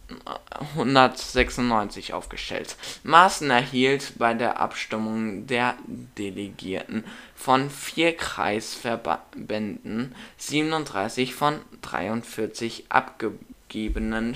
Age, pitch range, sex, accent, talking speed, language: 10-29, 110-130 Hz, male, German, 65 wpm, German